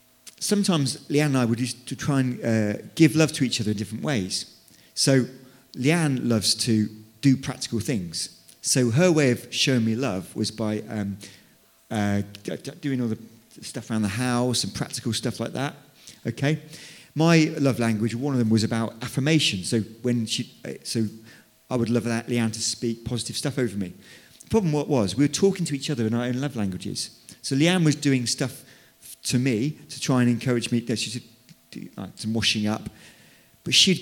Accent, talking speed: British, 185 wpm